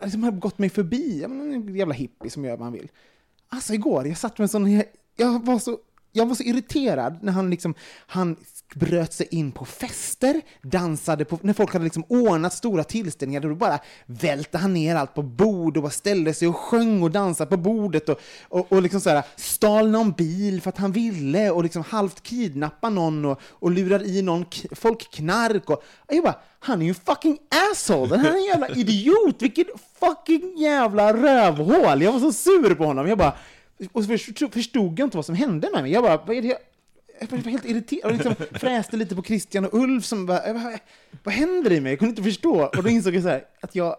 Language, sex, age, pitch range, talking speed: Swedish, male, 30-49, 150-225 Hz, 215 wpm